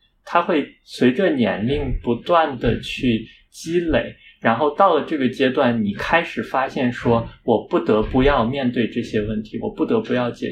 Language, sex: Chinese, male